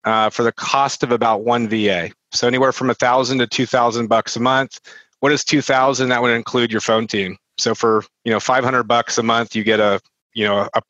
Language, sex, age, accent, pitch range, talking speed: English, male, 30-49, American, 115-135 Hz, 240 wpm